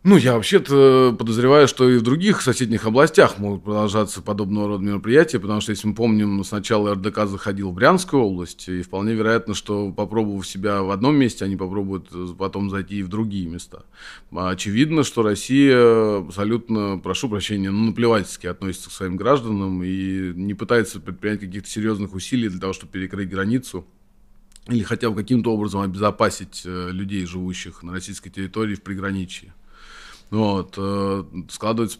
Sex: male